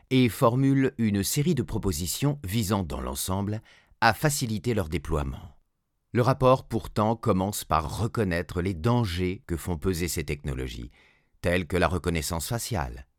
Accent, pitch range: French, 90-135 Hz